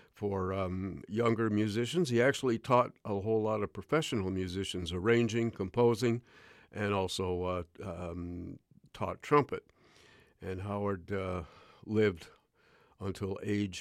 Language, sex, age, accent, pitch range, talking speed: English, male, 60-79, American, 95-115 Hz, 115 wpm